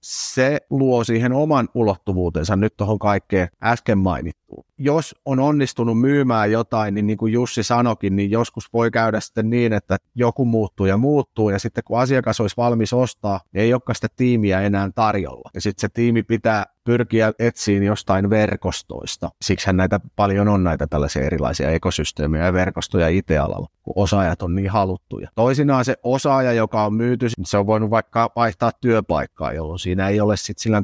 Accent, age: native, 30-49